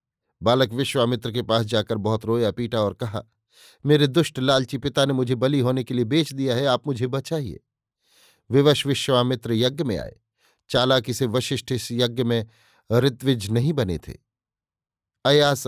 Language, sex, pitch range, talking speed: Hindi, male, 115-140 Hz, 160 wpm